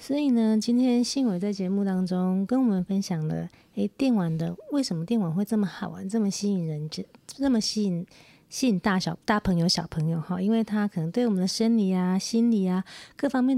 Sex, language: female, Chinese